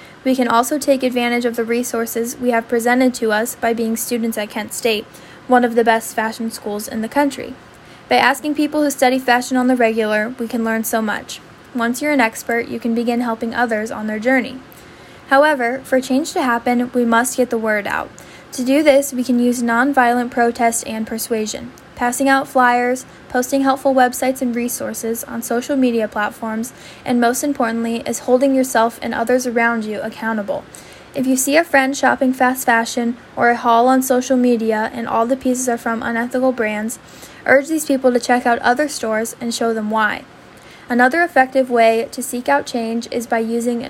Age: 10-29